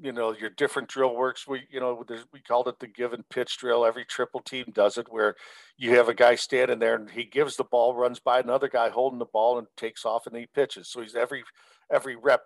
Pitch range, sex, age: 115-135 Hz, male, 50-69